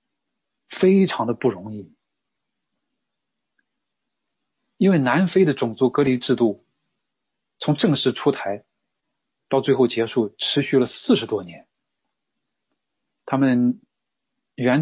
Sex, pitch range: male, 115-165 Hz